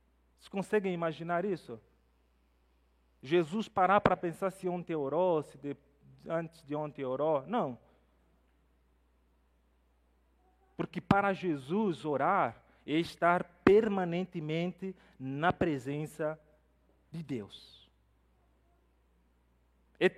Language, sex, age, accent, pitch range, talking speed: Portuguese, male, 40-59, Brazilian, 155-255 Hz, 90 wpm